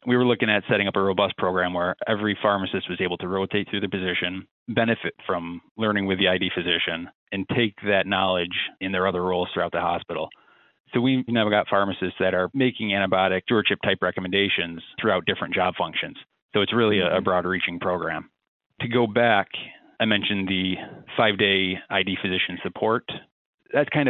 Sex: male